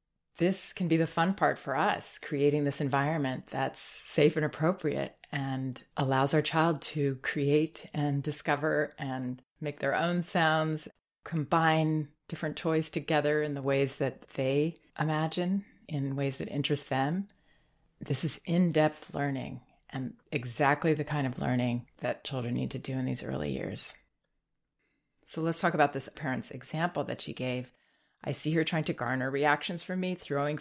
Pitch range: 135-160 Hz